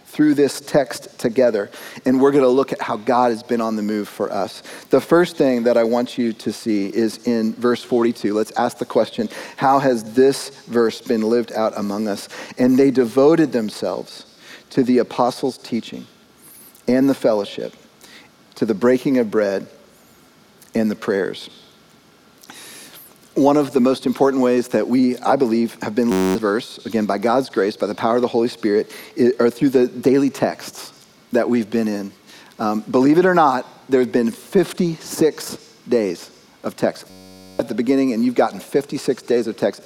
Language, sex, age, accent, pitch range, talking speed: English, male, 40-59, American, 115-135 Hz, 180 wpm